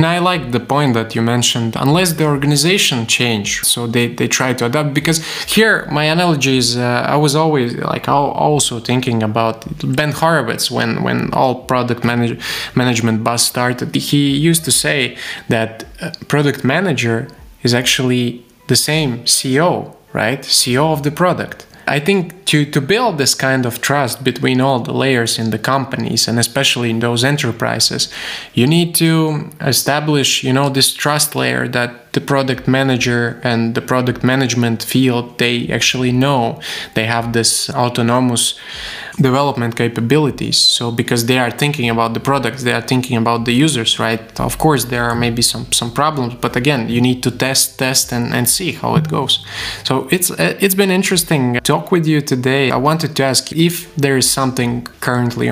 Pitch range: 120-145 Hz